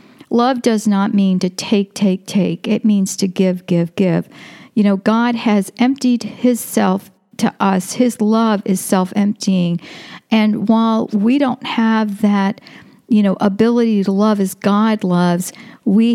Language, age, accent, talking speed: English, 50-69, American, 155 wpm